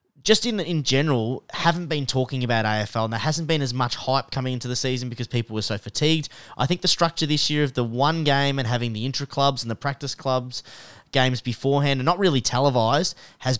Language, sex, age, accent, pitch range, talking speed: English, male, 20-39, Australian, 120-145 Hz, 225 wpm